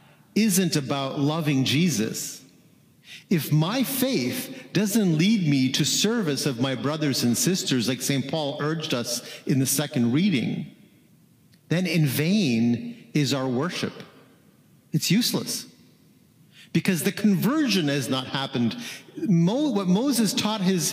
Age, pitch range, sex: 50-69, 135-200 Hz, male